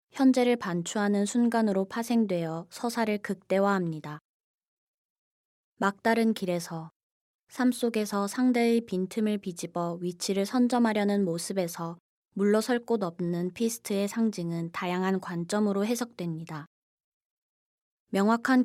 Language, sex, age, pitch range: Korean, female, 20-39, 175-225 Hz